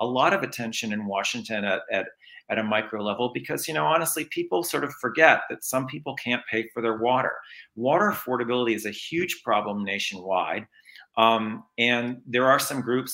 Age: 40-59